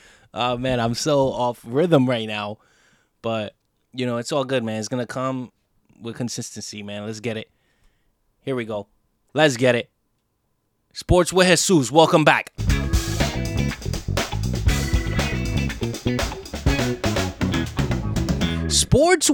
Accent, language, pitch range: American, English, 110-150 Hz